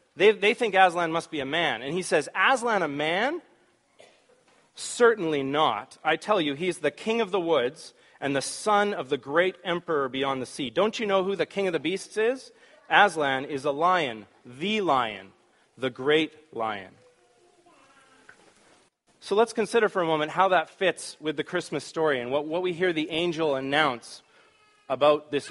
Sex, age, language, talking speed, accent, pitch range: male, 30-49, English, 180 wpm, American, 150-205 Hz